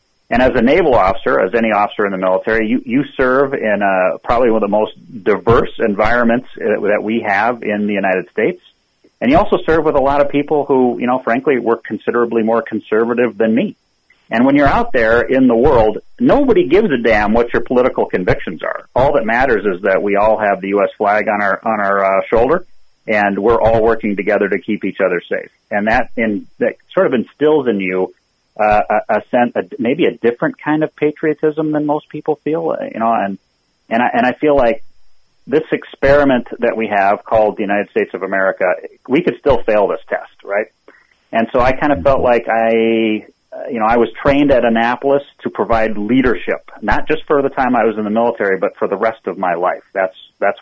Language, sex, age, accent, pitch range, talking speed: English, male, 40-59, American, 105-140 Hz, 215 wpm